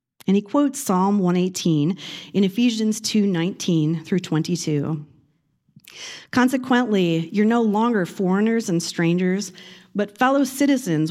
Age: 40-59